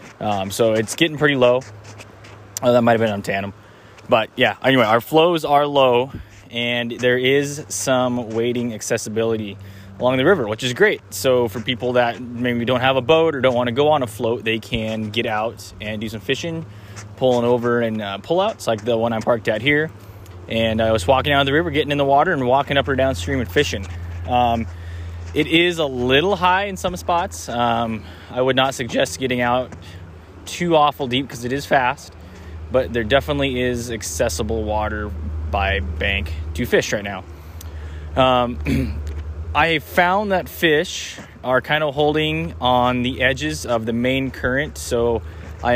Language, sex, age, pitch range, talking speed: English, male, 20-39, 100-135 Hz, 185 wpm